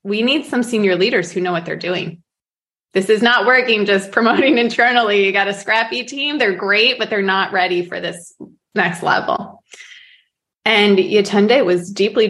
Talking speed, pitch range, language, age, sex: 170 wpm, 190-235 Hz, English, 20-39, female